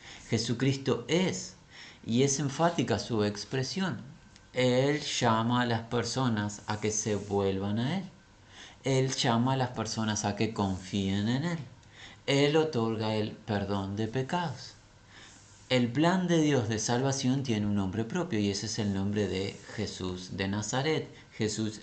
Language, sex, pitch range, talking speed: Spanish, male, 100-130 Hz, 150 wpm